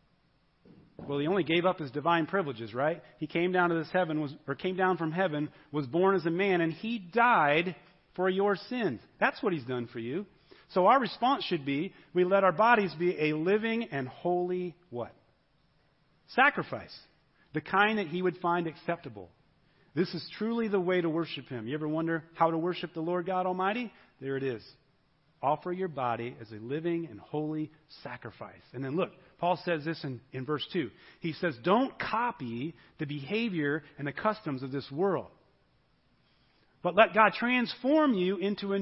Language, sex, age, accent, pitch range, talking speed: English, male, 40-59, American, 145-200 Hz, 185 wpm